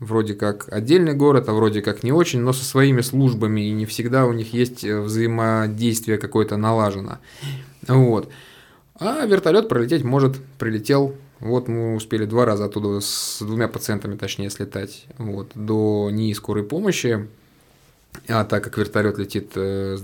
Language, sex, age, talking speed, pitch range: Russian, male, 20-39, 150 wpm, 105-125 Hz